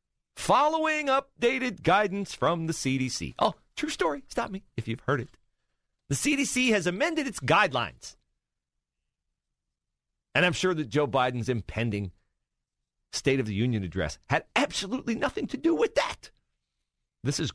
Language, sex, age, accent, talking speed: English, male, 40-59, American, 145 wpm